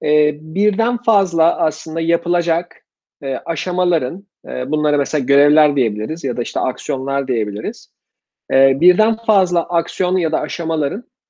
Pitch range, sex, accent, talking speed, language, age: 150-190 Hz, male, native, 105 wpm, Turkish, 40-59